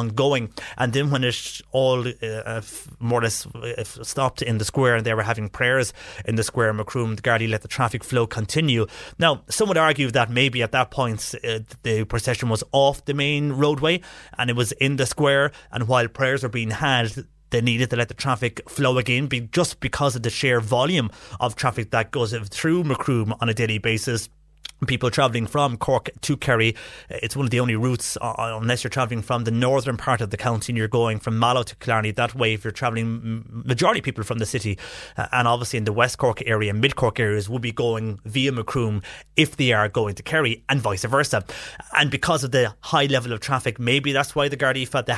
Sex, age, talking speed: male, 30-49, 215 wpm